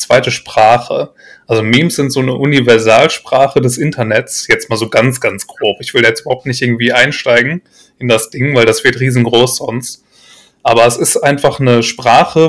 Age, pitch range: 30-49, 115-140 Hz